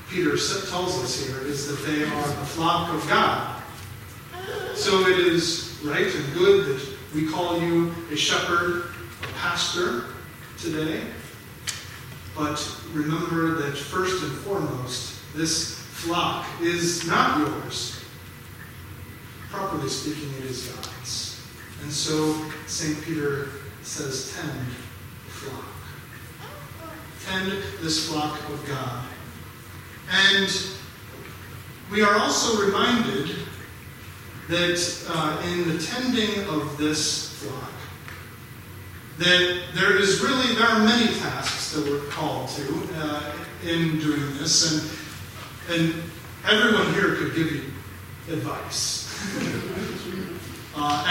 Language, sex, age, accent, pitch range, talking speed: English, male, 40-59, American, 130-180 Hz, 110 wpm